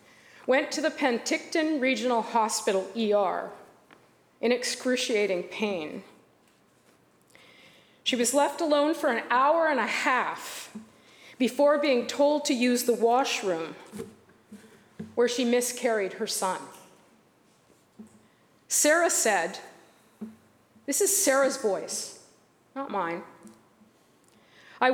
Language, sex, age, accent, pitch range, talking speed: English, female, 50-69, American, 230-285 Hz, 100 wpm